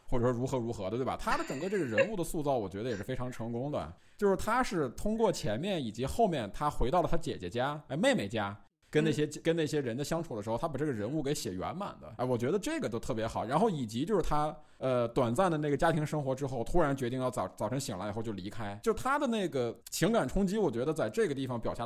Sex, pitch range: male, 120-190 Hz